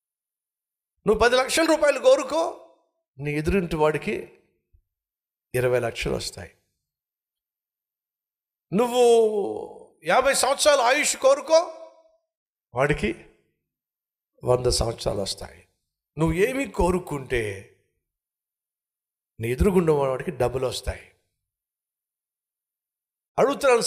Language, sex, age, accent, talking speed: Telugu, male, 60-79, native, 70 wpm